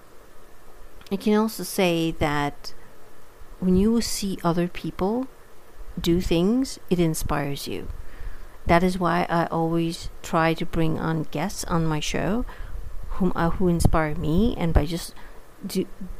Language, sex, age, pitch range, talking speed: English, female, 50-69, 160-180 Hz, 140 wpm